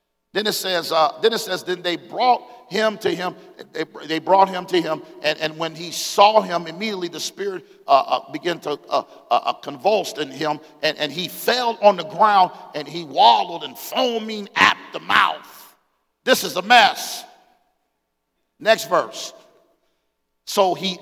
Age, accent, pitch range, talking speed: 50-69, American, 135-190 Hz, 170 wpm